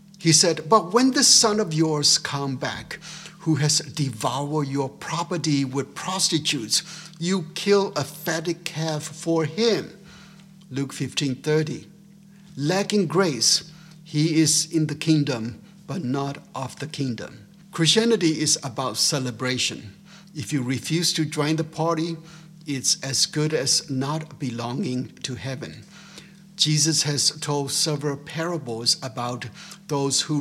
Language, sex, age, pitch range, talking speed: English, male, 60-79, 140-175 Hz, 130 wpm